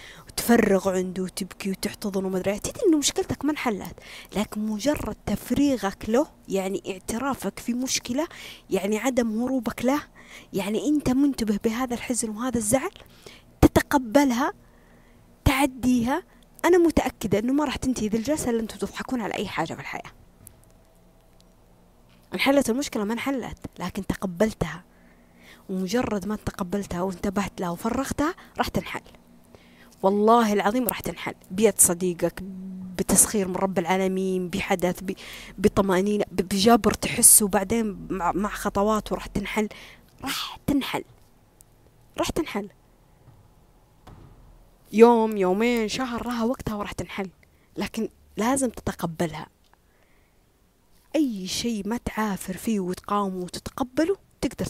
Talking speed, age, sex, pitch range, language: 115 wpm, 20-39, female, 190-245 Hz, Arabic